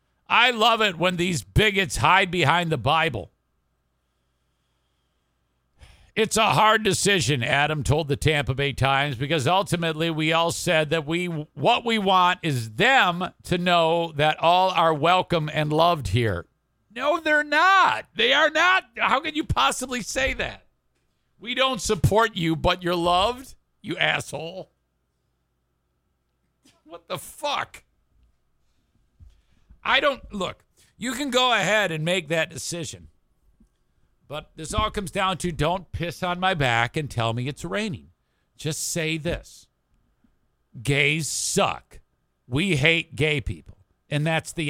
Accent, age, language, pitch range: American, 50-69, English, 115-185 Hz